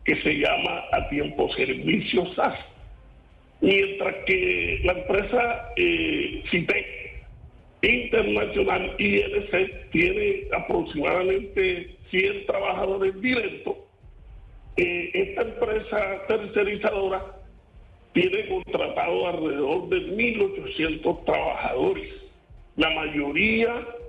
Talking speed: 75 wpm